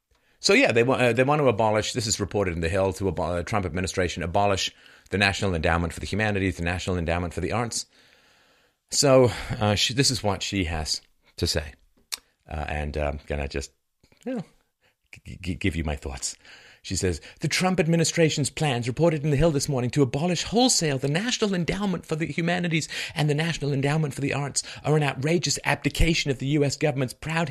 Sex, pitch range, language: male, 100-160 Hz, English